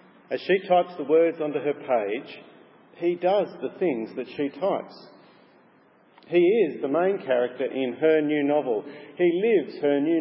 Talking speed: 165 wpm